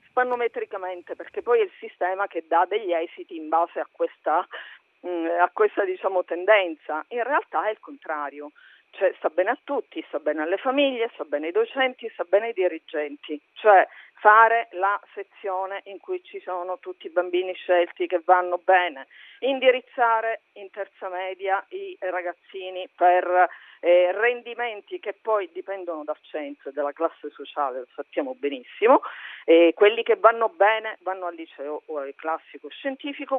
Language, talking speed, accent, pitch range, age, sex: Italian, 160 wpm, native, 175-255 Hz, 50-69, female